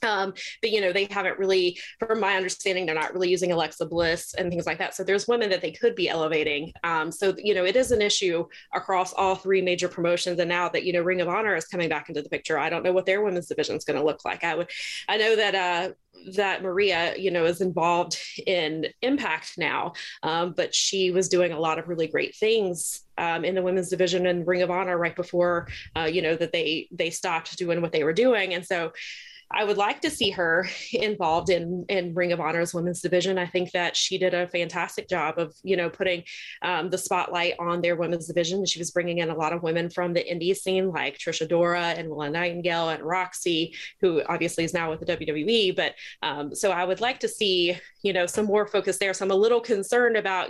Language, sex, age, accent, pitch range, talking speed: English, female, 20-39, American, 170-195 Hz, 235 wpm